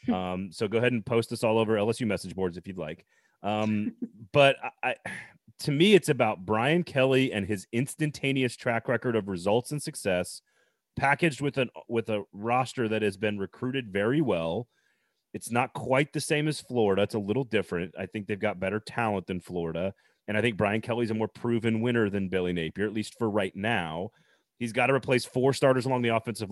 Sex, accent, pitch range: male, American, 105-130 Hz